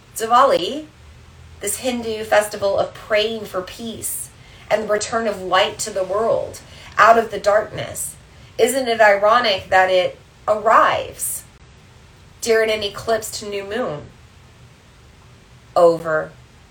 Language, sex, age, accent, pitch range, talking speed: English, female, 30-49, American, 190-225 Hz, 120 wpm